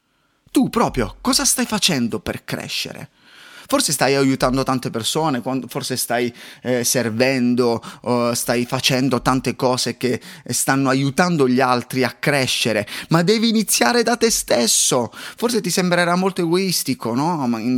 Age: 30-49